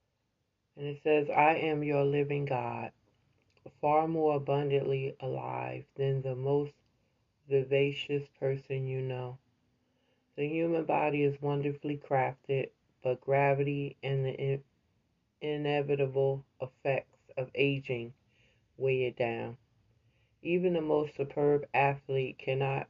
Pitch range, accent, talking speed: 125-145 Hz, American, 110 wpm